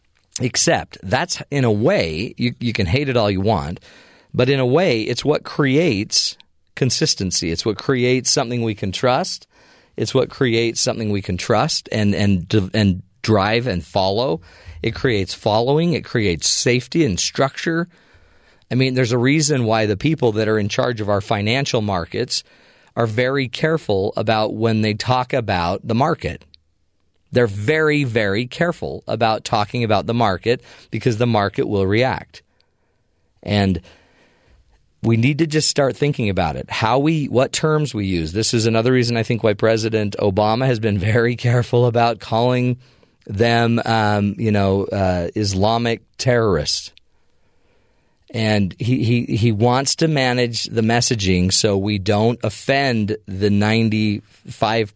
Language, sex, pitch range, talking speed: English, male, 100-125 Hz, 155 wpm